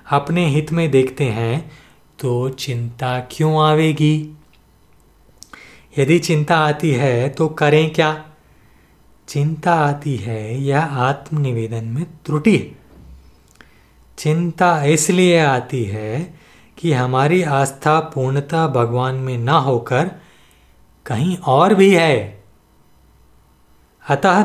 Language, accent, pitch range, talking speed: Hindi, native, 130-170 Hz, 100 wpm